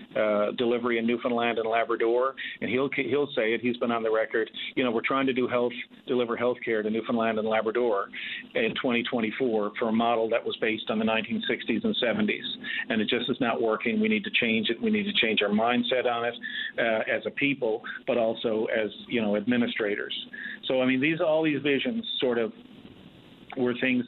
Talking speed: 205 wpm